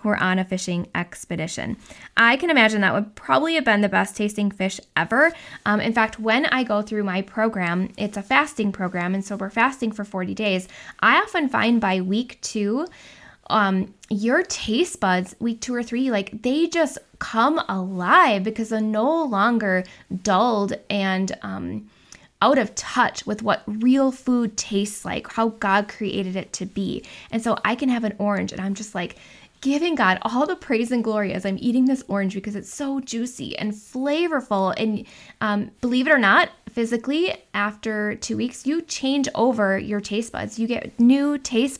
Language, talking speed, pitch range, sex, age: English, 185 wpm, 200-250 Hz, female, 10-29